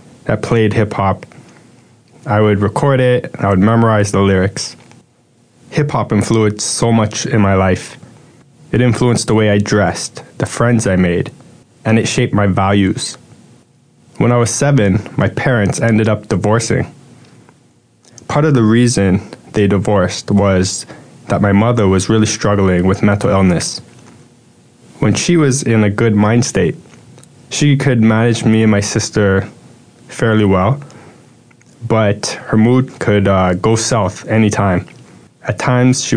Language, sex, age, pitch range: English, male, 20-39, 100-120 Hz